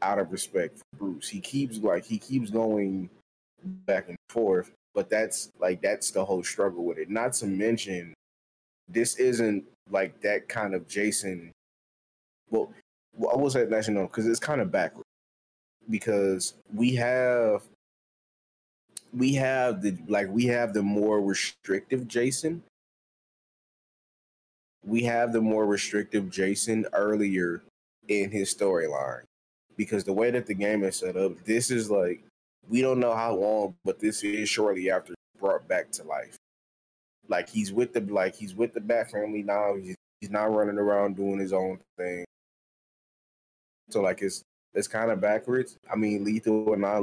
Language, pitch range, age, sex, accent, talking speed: English, 95-115 Hz, 20-39, male, American, 160 wpm